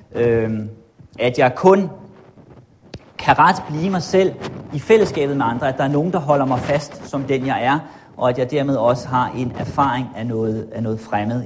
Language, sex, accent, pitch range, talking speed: Danish, male, native, 120-145 Hz, 200 wpm